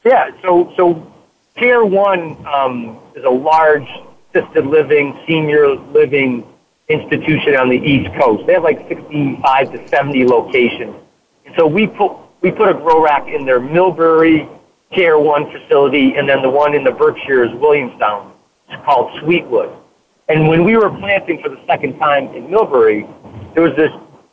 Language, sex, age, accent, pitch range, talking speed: English, male, 40-59, American, 150-220 Hz, 160 wpm